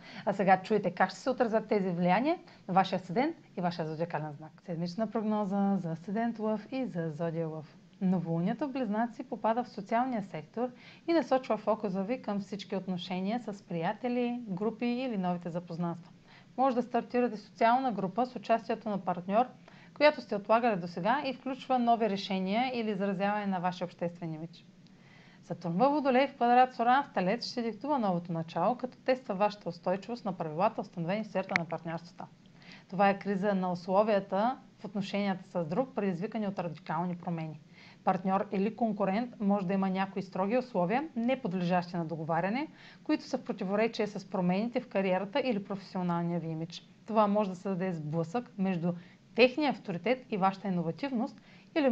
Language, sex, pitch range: Bulgarian, female, 180-230 Hz